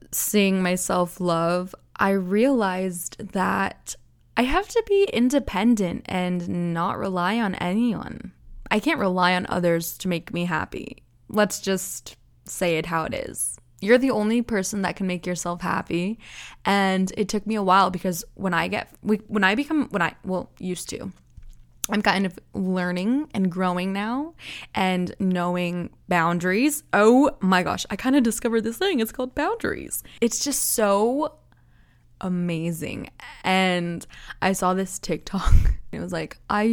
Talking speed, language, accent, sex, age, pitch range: 155 wpm, English, American, female, 20-39, 175-215 Hz